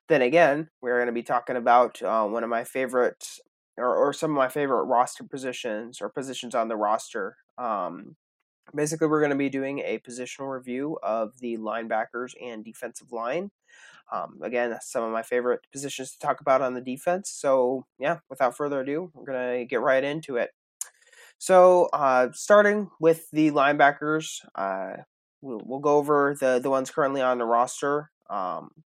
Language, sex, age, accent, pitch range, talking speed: English, male, 20-39, American, 125-155 Hz, 180 wpm